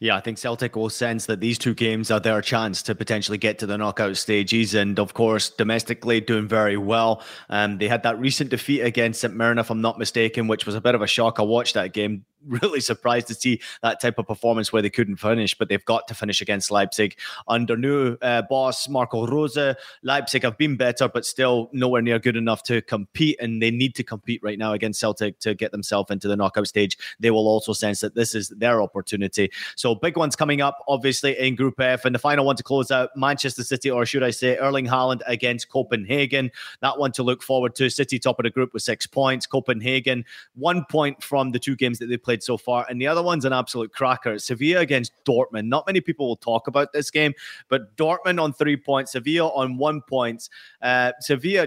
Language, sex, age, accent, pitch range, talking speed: English, male, 20-39, British, 115-135 Hz, 225 wpm